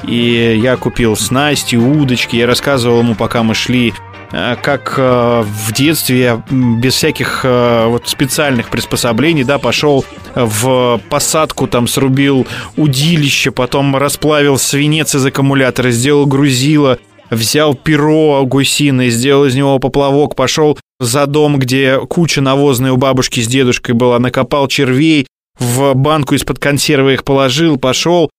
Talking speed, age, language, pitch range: 135 wpm, 20-39, Russian, 125-150 Hz